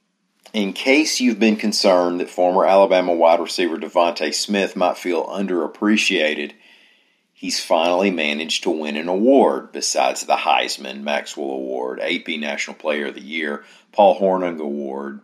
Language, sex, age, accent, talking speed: English, male, 40-59, American, 140 wpm